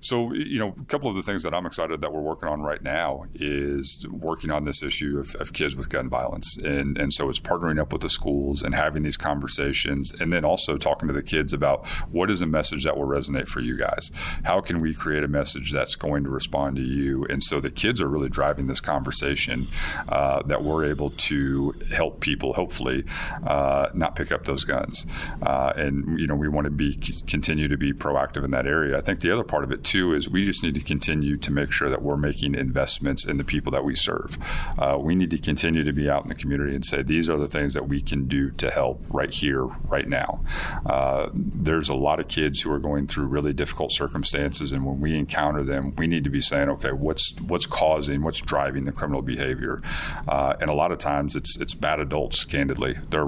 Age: 40-59